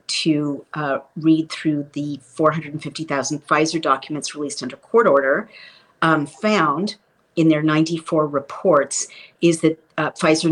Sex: female